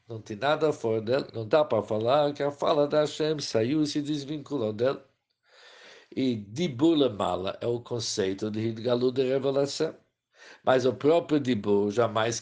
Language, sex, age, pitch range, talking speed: Portuguese, male, 50-69, 110-140 Hz, 160 wpm